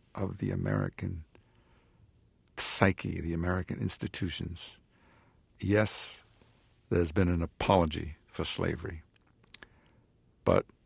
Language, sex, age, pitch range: English, male, 60-79, 85-100 Hz